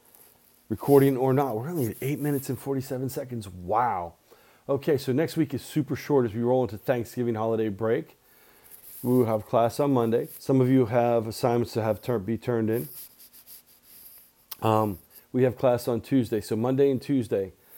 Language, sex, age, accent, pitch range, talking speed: English, male, 40-59, American, 120-135 Hz, 180 wpm